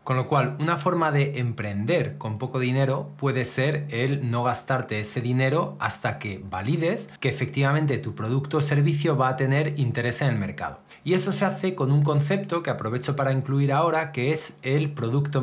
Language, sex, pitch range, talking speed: Spanish, male, 125-155 Hz, 190 wpm